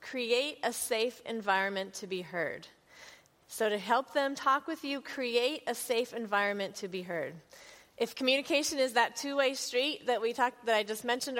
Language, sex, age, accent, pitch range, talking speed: English, female, 30-49, American, 200-255 Hz, 180 wpm